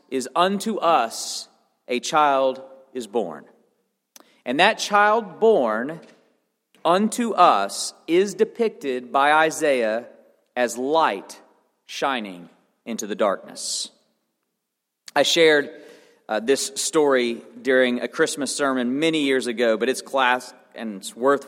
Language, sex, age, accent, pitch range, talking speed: English, male, 40-59, American, 115-150 Hz, 115 wpm